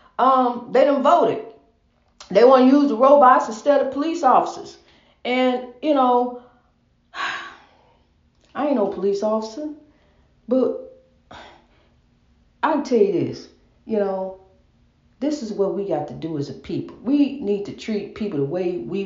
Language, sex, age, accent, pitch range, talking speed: English, female, 40-59, American, 200-275 Hz, 150 wpm